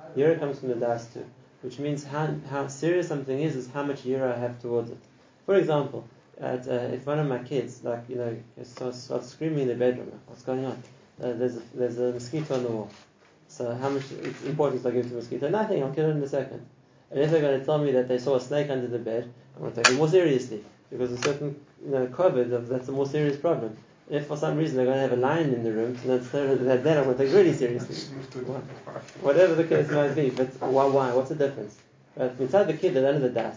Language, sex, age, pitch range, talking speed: English, male, 30-49, 125-145 Hz, 250 wpm